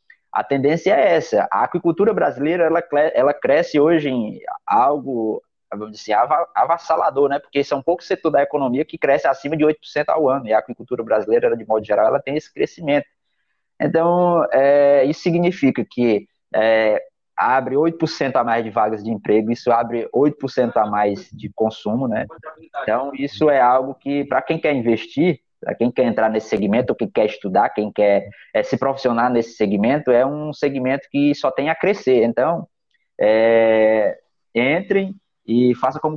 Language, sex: Portuguese, male